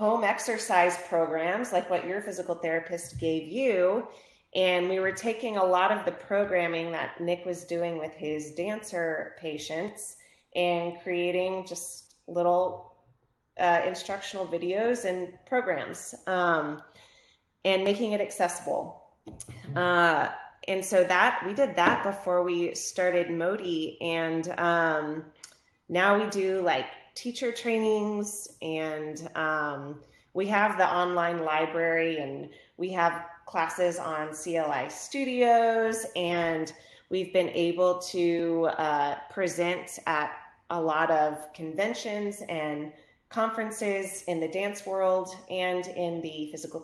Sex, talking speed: female, 125 wpm